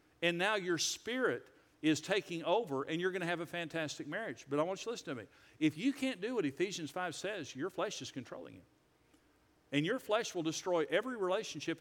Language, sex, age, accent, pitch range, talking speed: English, male, 50-69, American, 145-185 Hz, 220 wpm